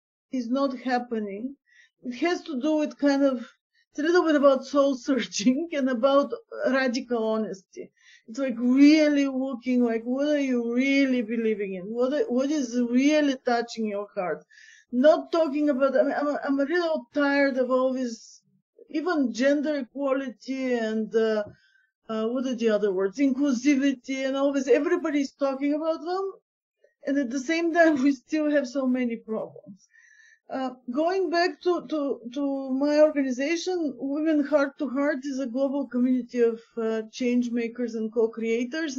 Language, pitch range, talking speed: English, 245-300 Hz, 165 wpm